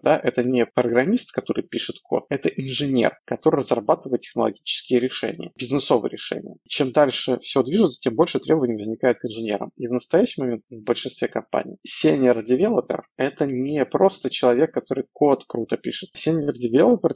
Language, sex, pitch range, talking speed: Russian, male, 125-145 Hz, 155 wpm